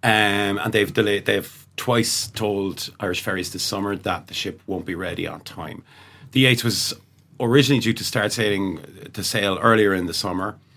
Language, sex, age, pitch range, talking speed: English, male, 40-59, 90-115 Hz, 185 wpm